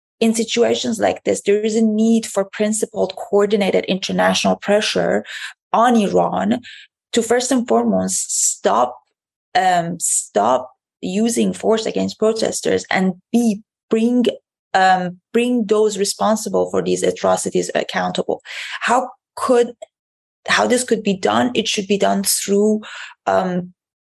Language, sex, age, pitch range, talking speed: English, female, 30-49, 180-220 Hz, 125 wpm